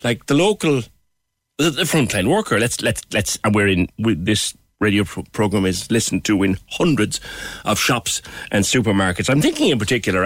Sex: male